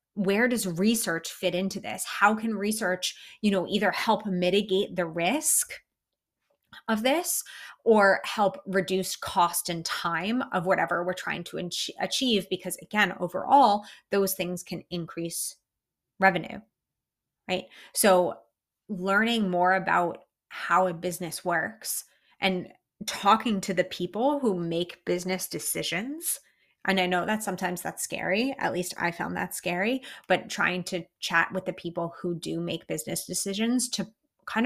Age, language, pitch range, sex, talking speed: 30-49, English, 180-215 Hz, female, 145 wpm